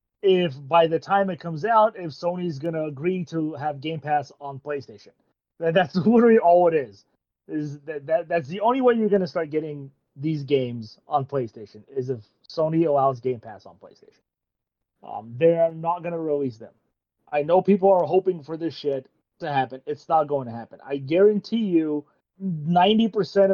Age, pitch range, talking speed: 30-49, 140-190 Hz, 180 wpm